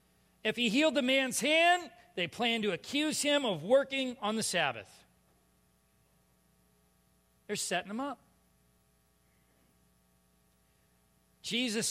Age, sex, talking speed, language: 40-59, male, 105 wpm, English